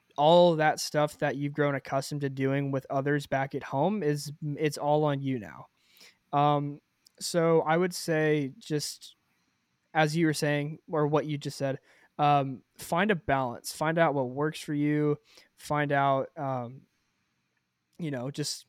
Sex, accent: male, American